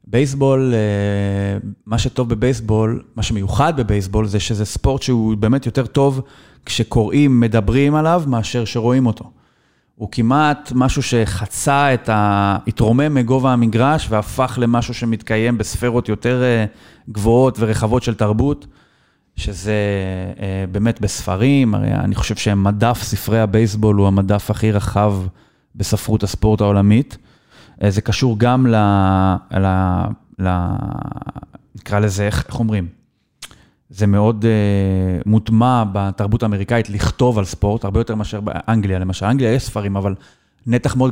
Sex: male